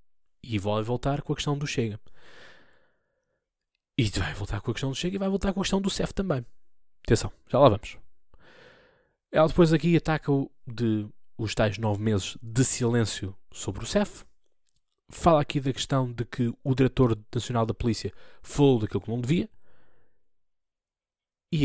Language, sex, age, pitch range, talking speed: Portuguese, male, 20-39, 105-130 Hz, 165 wpm